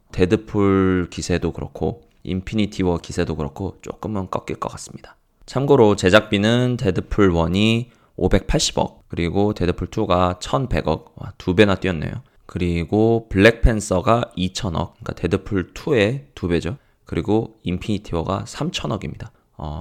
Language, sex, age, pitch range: Korean, male, 20-39, 85-110 Hz